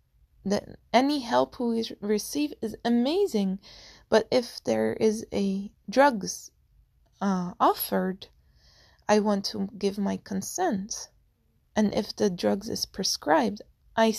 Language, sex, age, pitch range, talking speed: English, female, 20-39, 195-230 Hz, 115 wpm